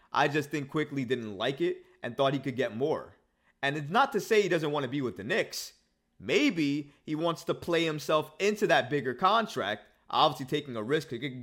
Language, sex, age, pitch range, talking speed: English, male, 30-49, 130-170 Hz, 225 wpm